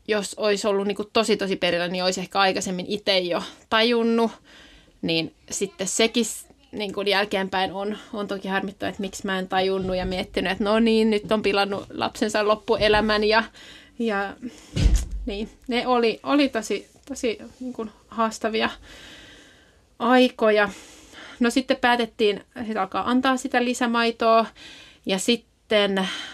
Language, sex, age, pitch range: Finnish, female, 30-49, 195-235 Hz